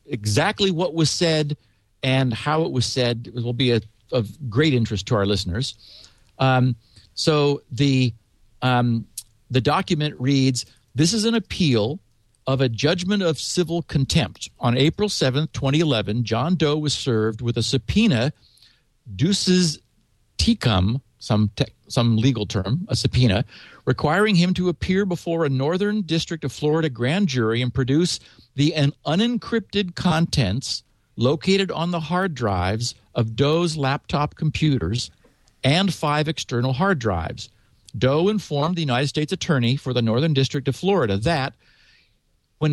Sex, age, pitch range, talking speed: male, 50-69, 120-170 Hz, 145 wpm